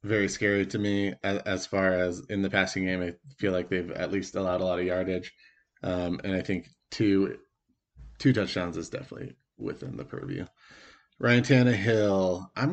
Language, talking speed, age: English, 175 wpm, 20-39